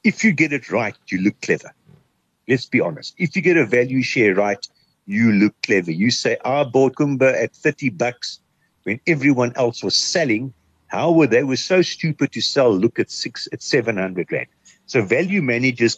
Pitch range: 105-160 Hz